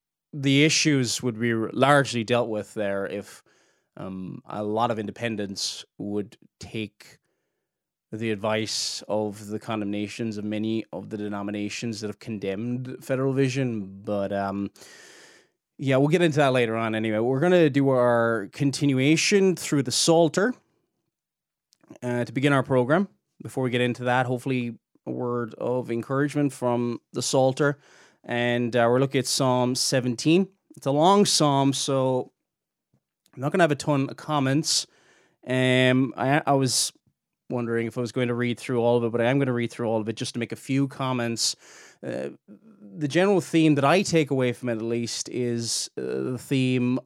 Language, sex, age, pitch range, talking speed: English, male, 20-39, 115-140 Hz, 175 wpm